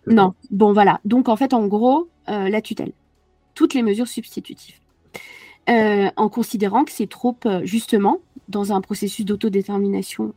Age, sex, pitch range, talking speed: 40-59, female, 220-325 Hz, 155 wpm